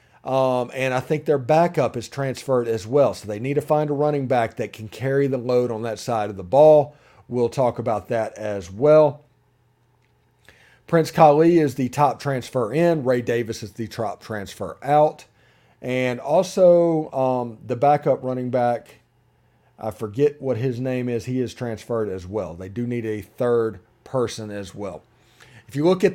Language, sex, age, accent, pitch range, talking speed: English, male, 40-59, American, 115-145 Hz, 180 wpm